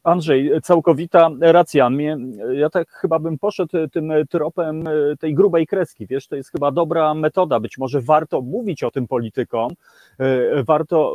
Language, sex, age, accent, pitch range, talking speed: Polish, male, 30-49, native, 140-180 Hz, 145 wpm